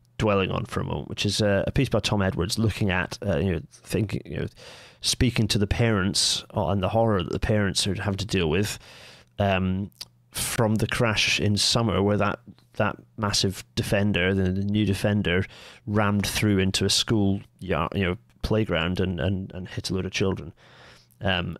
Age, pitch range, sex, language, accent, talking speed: 30-49, 95-110 Hz, male, English, British, 190 wpm